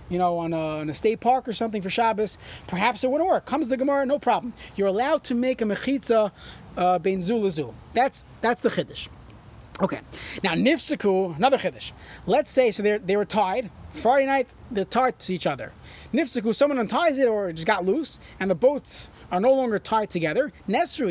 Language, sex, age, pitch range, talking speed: English, male, 30-49, 200-270 Hz, 195 wpm